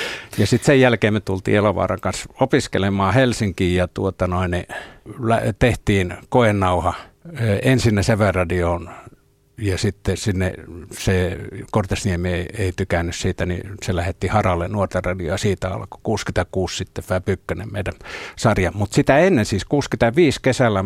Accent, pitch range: native, 90-110 Hz